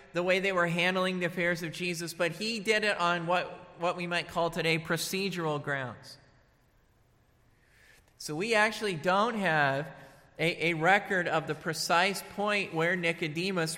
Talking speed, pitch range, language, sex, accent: 155 wpm, 160-215 Hz, English, male, American